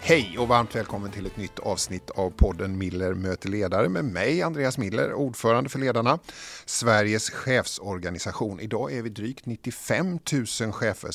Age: 50-69